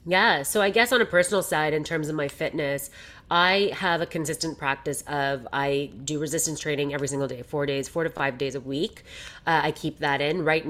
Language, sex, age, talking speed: English, female, 30-49, 225 wpm